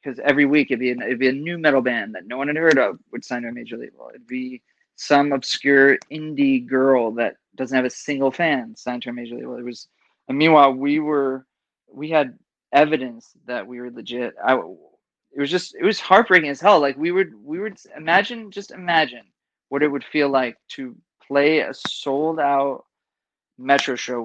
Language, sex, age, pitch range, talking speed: English, male, 20-39, 130-150 Hz, 205 wpm